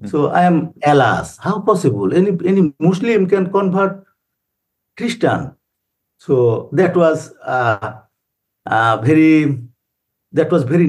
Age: 60-79